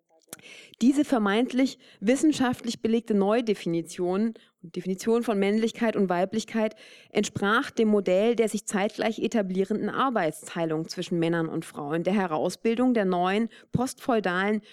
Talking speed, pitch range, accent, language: 105 wpm, 185-230 Hz, German, German